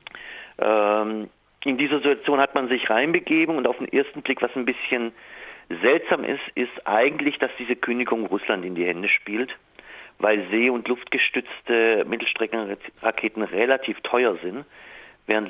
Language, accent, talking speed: German, German, 140 wpm